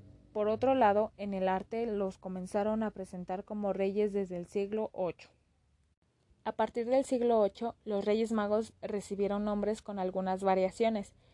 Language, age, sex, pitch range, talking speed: Spanish, 20-39, female, 190-225 Hz, 155 wpm